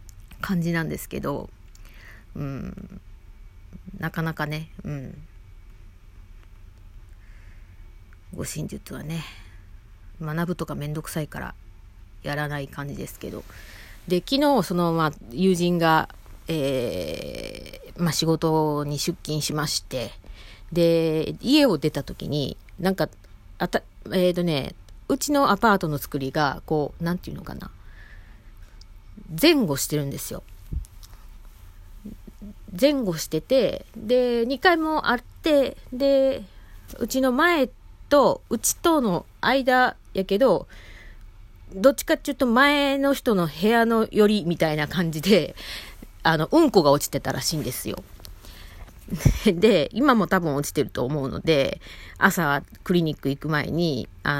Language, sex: Japanese, female